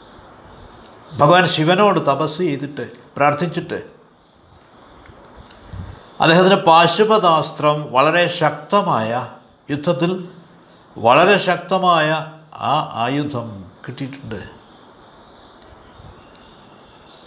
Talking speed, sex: 50 wpm, male